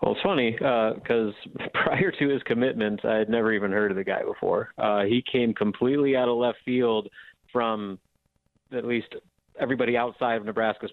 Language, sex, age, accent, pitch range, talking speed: English, male, 30-49, American, 105-120 Hz, 180 wpm